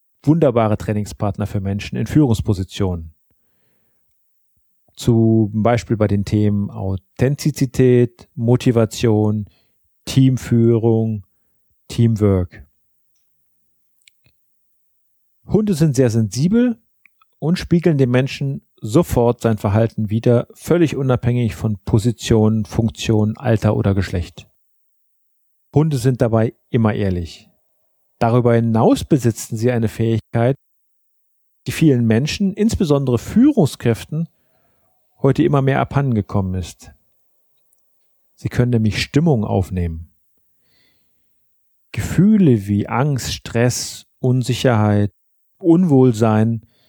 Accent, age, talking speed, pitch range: German, 40-59, 85 wpm, 105-135 Hz